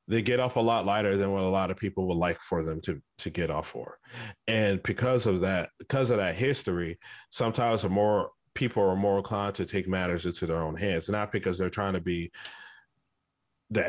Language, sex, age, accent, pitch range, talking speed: English, male, 40-59, American, 95-110 Hz, 215 wpm